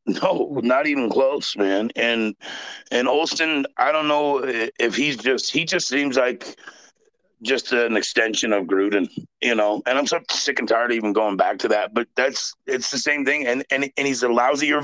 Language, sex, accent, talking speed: English, male, American, 200 wpm